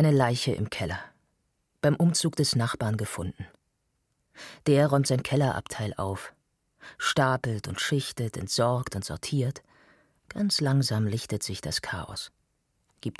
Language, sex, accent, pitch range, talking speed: German, female, German, 110-145 Hz, 125 wpm